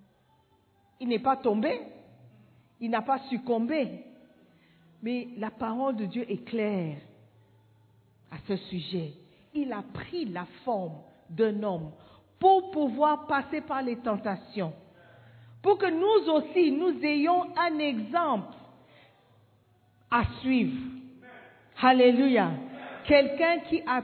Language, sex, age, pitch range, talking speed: French, female, 50-69, 195-285 Hz, 110 wpm